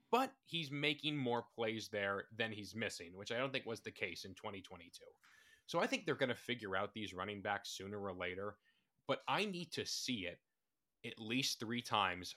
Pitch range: 105-140 Hz